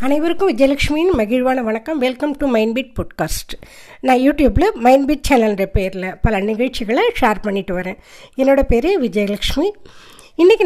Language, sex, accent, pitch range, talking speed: Tamil, female, native, 220-310 Hz, 125 wpm